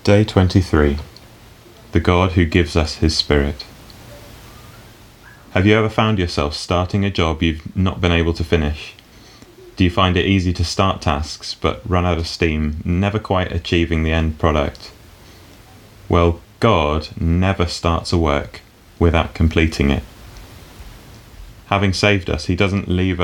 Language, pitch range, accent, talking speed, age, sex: English, 85-105 Hz, British, 145 wpm, 30-49, male